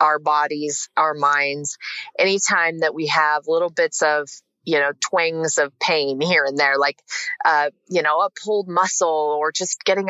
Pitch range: 150-205 Hz